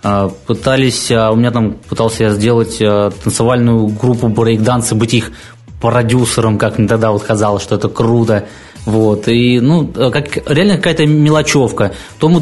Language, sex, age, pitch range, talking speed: Russian, male, 20-39, 110-135 Hz, 145 wpm